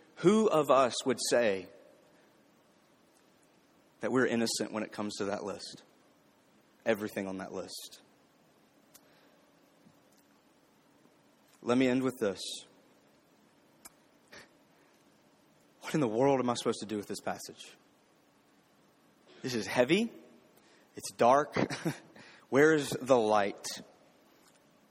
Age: 30-49